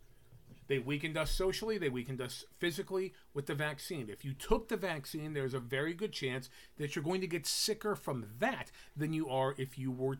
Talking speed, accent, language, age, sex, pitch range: 205 wpm, American, English, 40-59, male, 130-175 Hz